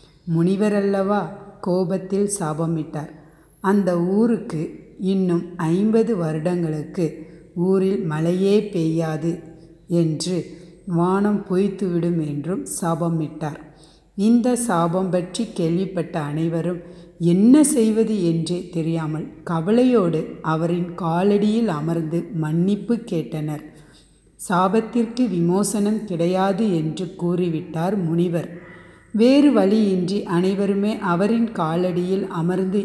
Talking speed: 80 wpm